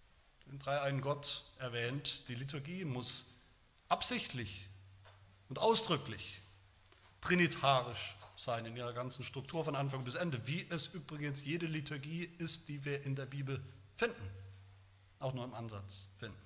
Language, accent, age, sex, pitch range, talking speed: German, German, 40-59, male, 120-190 Hz, 140 wpm